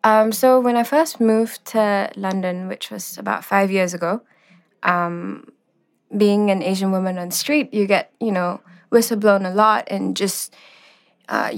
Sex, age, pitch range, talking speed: female, 20-39, 185-210 Hz, 165 wpm